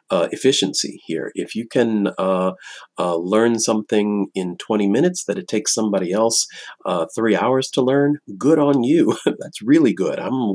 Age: 40-59